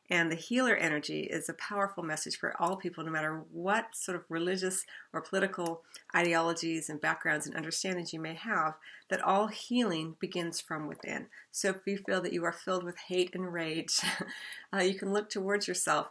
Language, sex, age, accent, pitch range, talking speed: English, female, 40-59, American, 160-195 Hz, 190 wpm